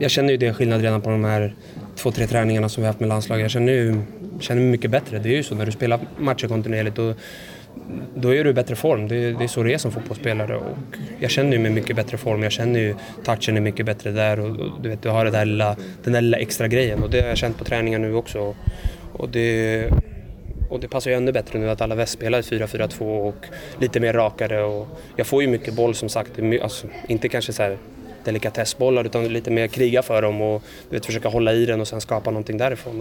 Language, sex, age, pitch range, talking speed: Swedish, male, 20-39, 110-120 Hz, 250 wpm